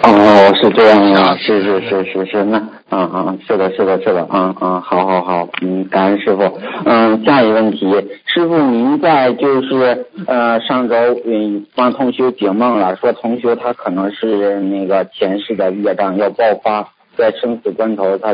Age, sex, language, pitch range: 50-69, male, Chinese, 110-155 Hz